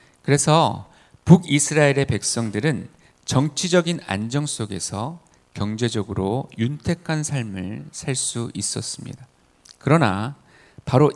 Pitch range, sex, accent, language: 110-145 Hz, male, native, Korean